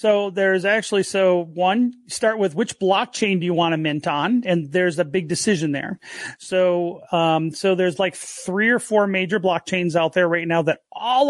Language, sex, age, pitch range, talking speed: English, male, 30-49, 170-205 Hz, 195 wpm